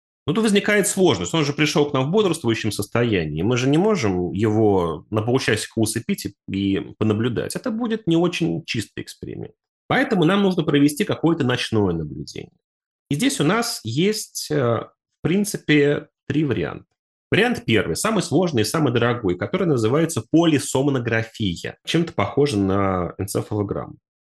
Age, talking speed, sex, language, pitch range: 30-49, 145 wpm, male, Russian, 110-165 Hz